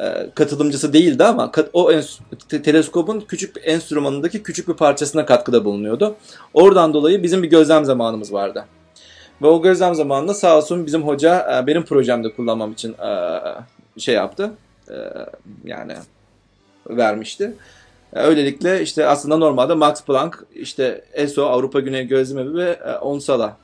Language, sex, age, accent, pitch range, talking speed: Turkish, male, 40-59, native, 130-180 Hz, 125 wpm